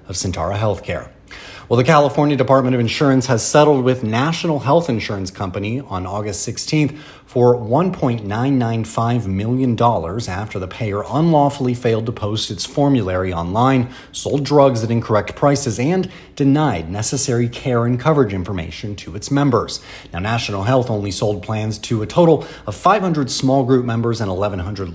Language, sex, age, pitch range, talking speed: English, male, 30-49, 105-130 Hz, 150 wpm